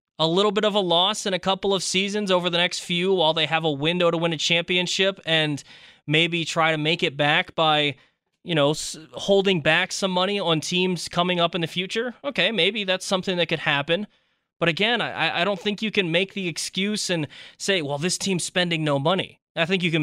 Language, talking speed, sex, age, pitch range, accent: English, 225 wpm, male, 20-39, 150-190 Hz, American